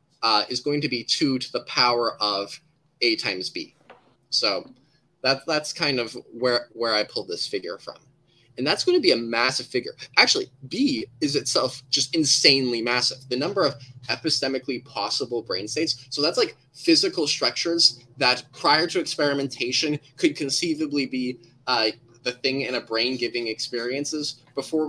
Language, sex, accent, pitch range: English, male, American, 125-155 Hz